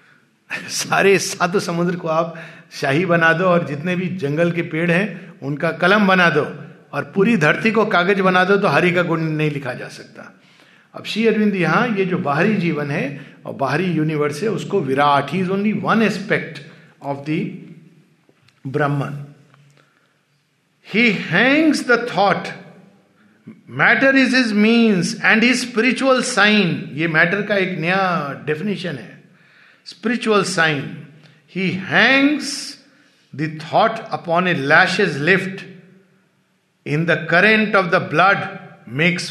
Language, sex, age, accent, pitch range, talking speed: Hindi, male, 50-69, native, 155-200 Hz, 140 wpm